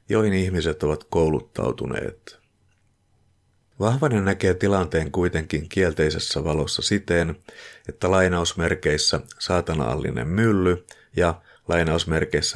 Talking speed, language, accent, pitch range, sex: 80 wpm, Finnish, native, 80-100 Hz, male